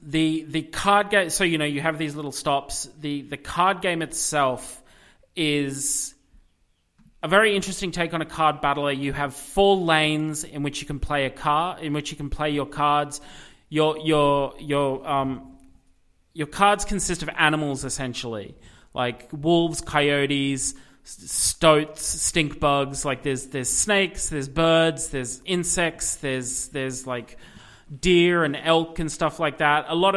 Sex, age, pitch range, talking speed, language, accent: male, 30-49, 135-165 Hz, 160 wpm, English, Australian